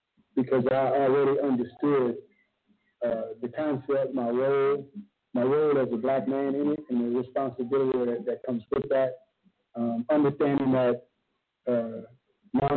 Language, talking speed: English, 140 wpm